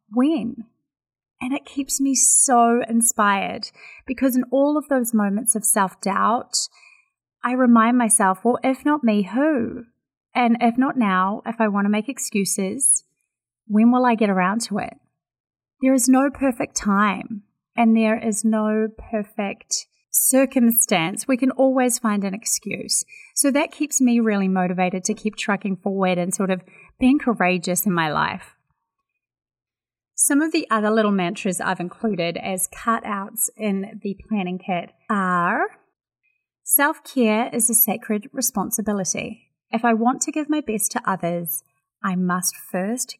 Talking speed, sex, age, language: 150 wpm, female, 30-49, English